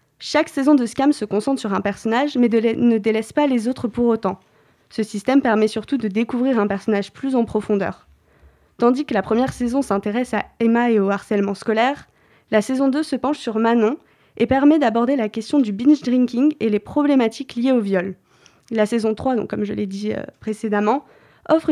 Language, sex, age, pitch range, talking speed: French, female, 20-39, 215-265 Hz, 195 wpm